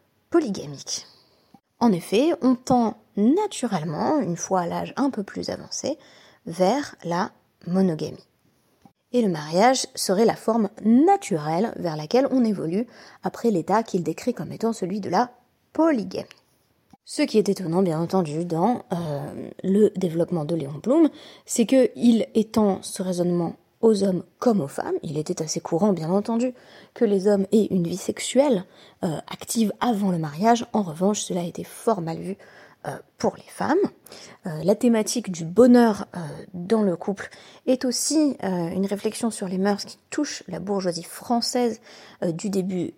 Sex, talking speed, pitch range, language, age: female, 165 wpm, 180-240 Hz, French, 20-39